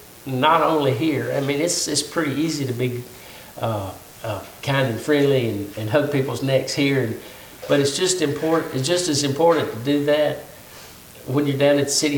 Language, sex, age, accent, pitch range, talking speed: English, male, 60-79, American, 120-150 Hz, 190 wpm